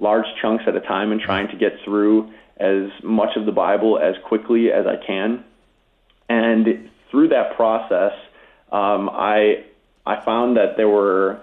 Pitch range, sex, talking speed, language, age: 95-110 Hz, male, 165 wpm, English, 20-39